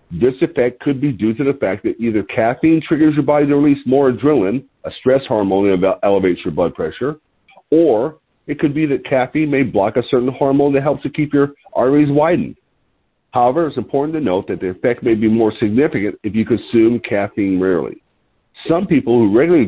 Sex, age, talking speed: male, 50-69, 200 wpm